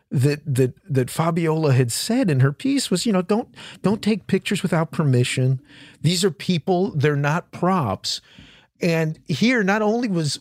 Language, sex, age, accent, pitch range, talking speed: English, male, 40-59, American, 125-180 Hz, 165 wpm